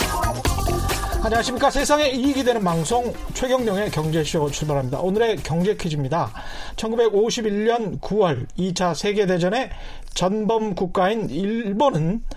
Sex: male